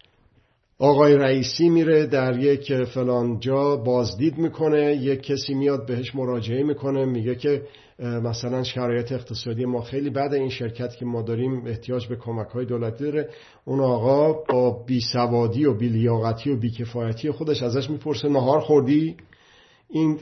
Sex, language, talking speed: male, Persian, 150 wpm